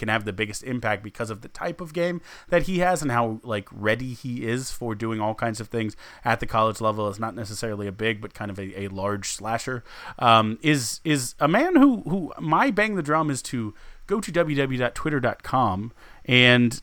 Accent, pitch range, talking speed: American, 110-140 Hz, 210 wpm